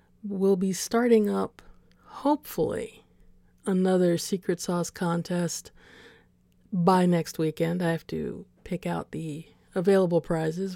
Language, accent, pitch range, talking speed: English, American, 170-205 Hz, 110 wpm